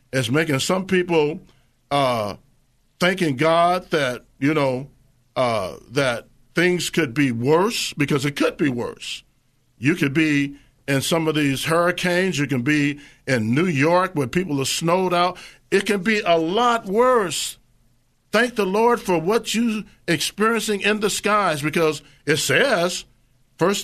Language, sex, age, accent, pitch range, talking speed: English, male, 50-69, American, 135-185 Hz, 150 wpm